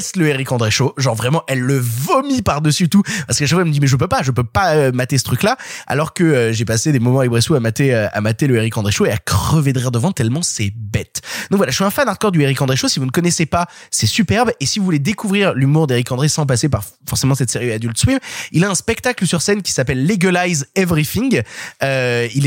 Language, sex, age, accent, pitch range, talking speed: French, male, 20-39, French, 130-175 Hz, 275 wpm